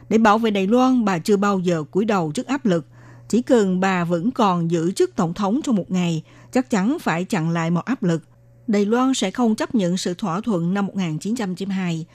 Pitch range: 175-235 Hz